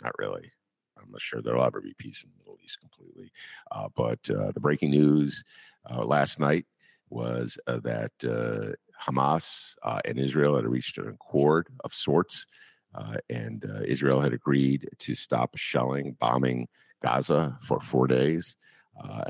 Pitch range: 65-80 Hz